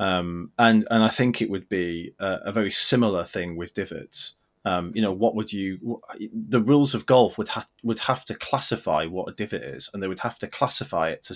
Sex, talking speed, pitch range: male, 230 wpm, 95-120 Hz